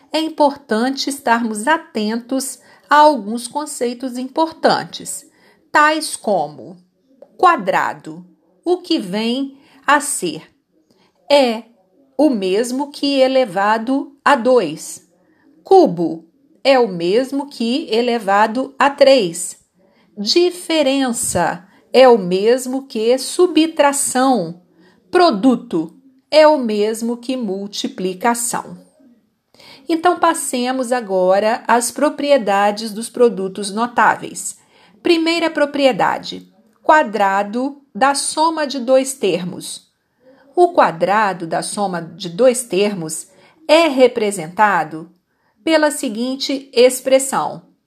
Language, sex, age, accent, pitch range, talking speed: Portuguese, female, 50-69, Brazilian, 205-285 Hz, 90 wpm